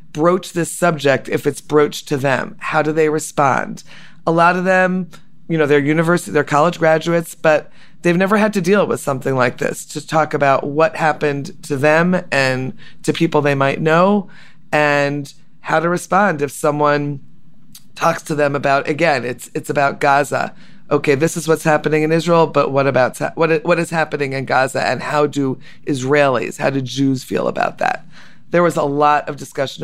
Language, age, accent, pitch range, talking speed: English, 30-49, American, 140-170 Hz, 185 wpm